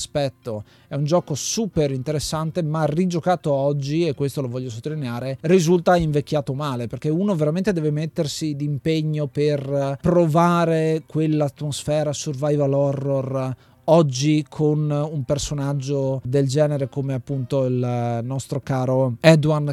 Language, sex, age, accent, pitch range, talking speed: Italian, male, 30-49, native, 135-160 Hz, 120 wpm